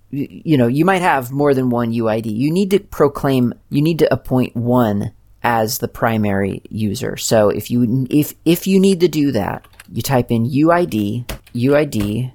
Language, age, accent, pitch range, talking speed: English, 30-49, American, 105-140 Hz, 180 wpm